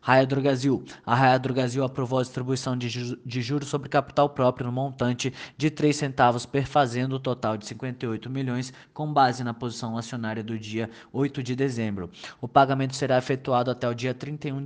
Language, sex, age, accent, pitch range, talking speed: Portuguese, male, 20-39, Brazilian, 120-140 Hz, 190 wpm